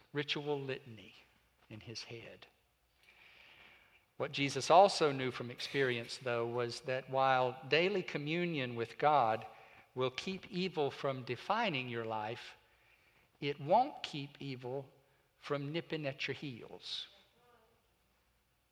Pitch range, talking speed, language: 125-150 Hz, 110 wpm, English